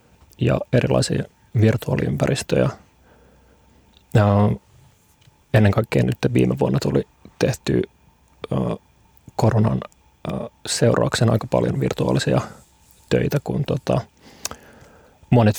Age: 30-49